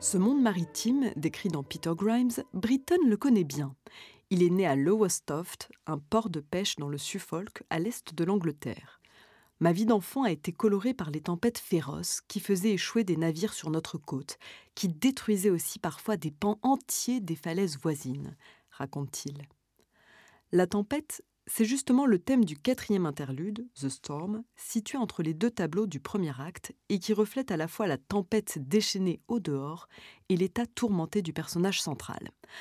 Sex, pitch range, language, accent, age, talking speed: female, 160-220 Hz, French, French, 30-49, 170 wpm